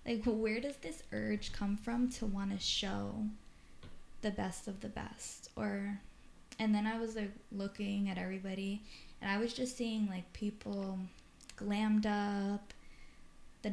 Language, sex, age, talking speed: English, female, 10-29, 155 wpm